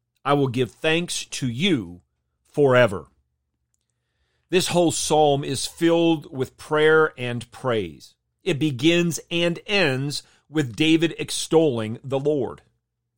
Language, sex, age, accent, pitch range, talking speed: English, male, 40-59, American, 120-160 Hz, 115 wpm